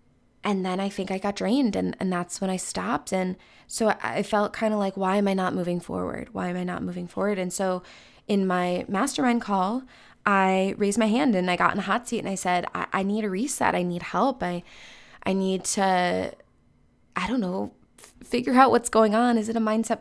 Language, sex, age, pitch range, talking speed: English, female, 20-39, 190-235 Hz, 235 wpm